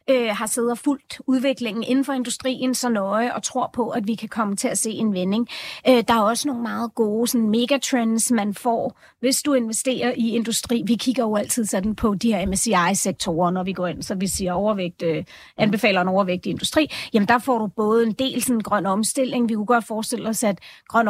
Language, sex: Danish, female